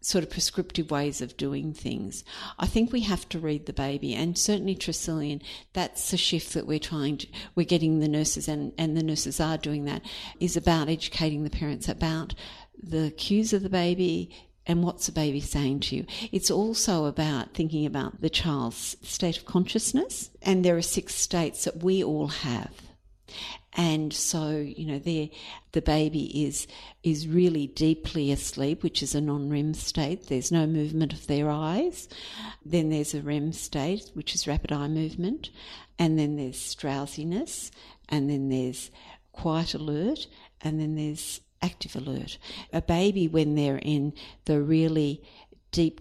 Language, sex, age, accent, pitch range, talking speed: English, female, 50-69, Australian, 145-175 Hz, 165 wpm